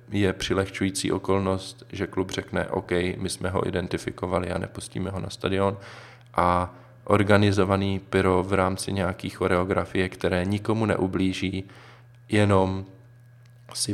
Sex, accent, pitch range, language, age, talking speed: male, native, 90-110 Hz, Czech, 20-39, 120 wpm